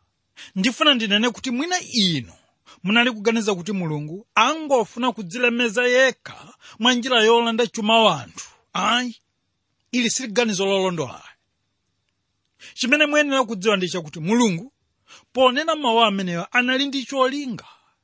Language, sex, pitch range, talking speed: English, male, 185-250 Hz, 105 wpm